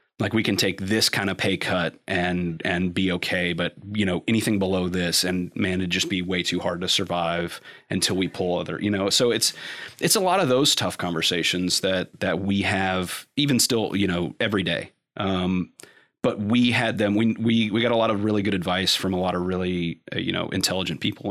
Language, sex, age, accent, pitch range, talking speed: English, male, 30-49, American, 90-105 Hz, 220 wpm